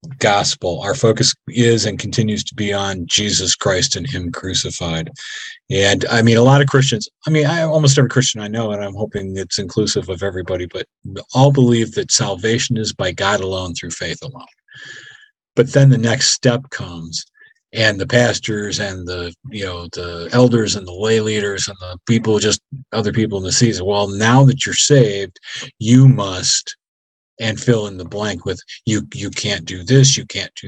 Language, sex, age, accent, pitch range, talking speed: English, male, 40-59, American, 100-125 Hz, 190 wpm